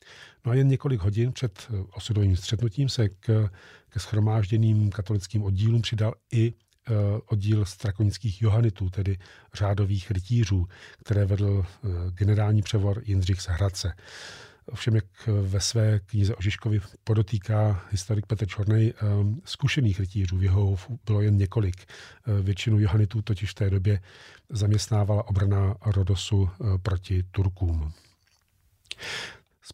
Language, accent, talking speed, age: Czech, native, 110 wpm, 40-59